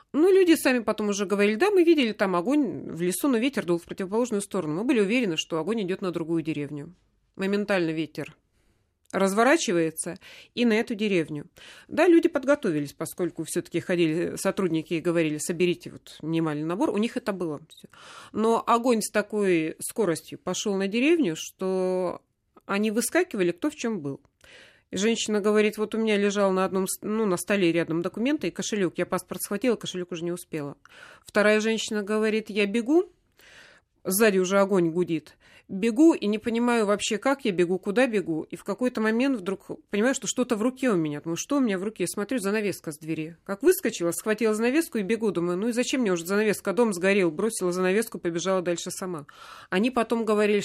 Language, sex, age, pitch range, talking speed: Russian, female, 30-49, 175-225 Hz, 185 wpm